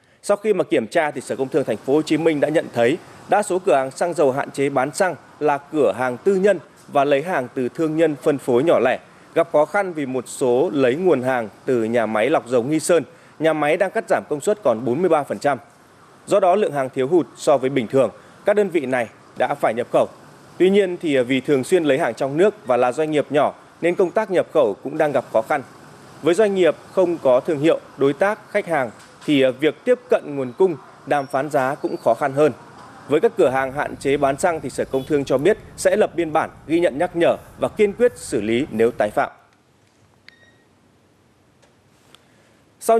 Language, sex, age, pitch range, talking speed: Vietnamese, male, 20-39, 130-175 Hz, 225 wpm